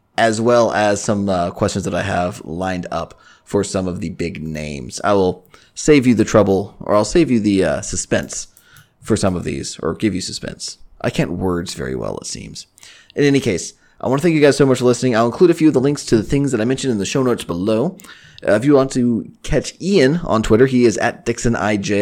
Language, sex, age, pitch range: English, male, 20-39, 100-130 Hz